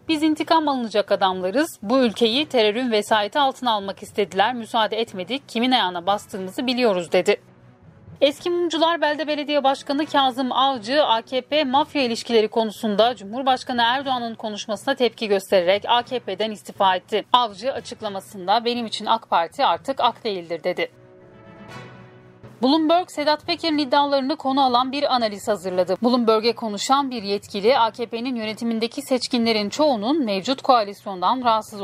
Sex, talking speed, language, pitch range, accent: female, 120 wpm, Turkish, 205-265 Hz, native